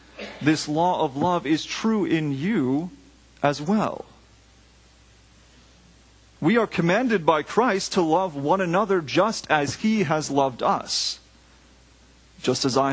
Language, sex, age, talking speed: English, male, 30-49, 130 wpm